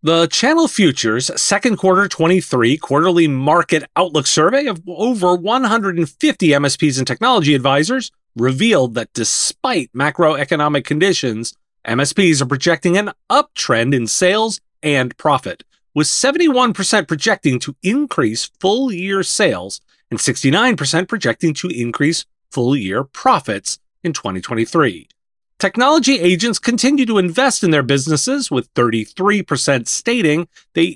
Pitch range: 135-205 Hz